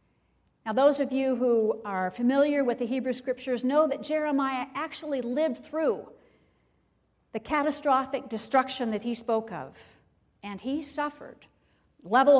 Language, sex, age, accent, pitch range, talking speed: English, female, 50-69, American, 220-285 Hz, 135 wpm